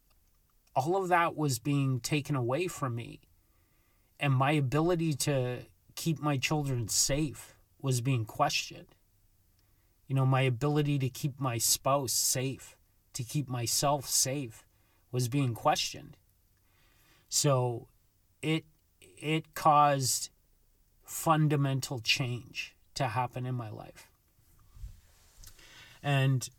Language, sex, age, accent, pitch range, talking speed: English, male, 30-49, American, 110-150 Hz, 110 wpm